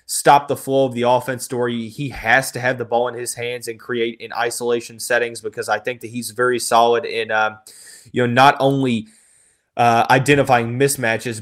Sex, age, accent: male, 20-39, American